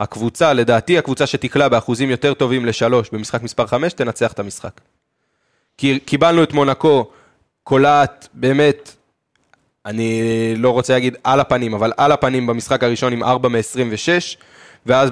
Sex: male